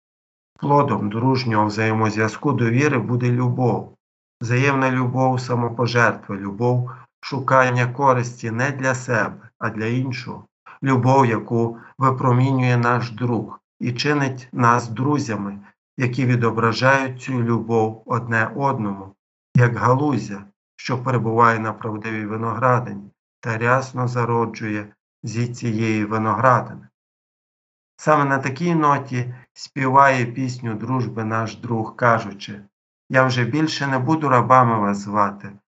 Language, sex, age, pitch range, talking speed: Ukrainian, male, 50-69, 110-130 Hz, 110 wpm